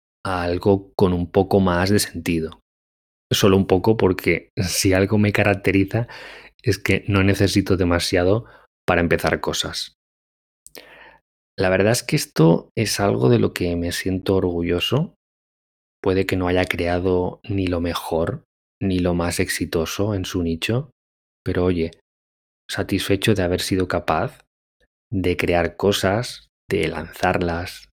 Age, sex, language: 20-39, male, Spanish